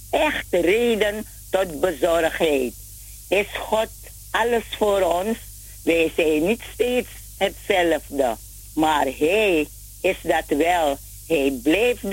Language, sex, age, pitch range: Dutch, female, 50-69, 140-220 Hz